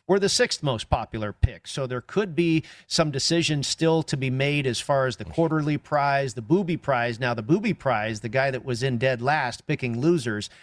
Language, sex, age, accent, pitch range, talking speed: English, male, 40-59, American, 125-155 Hz, 215 wpm